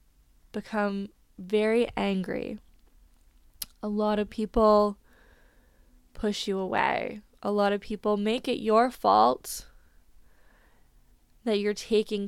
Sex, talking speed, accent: female, 105 wpm, American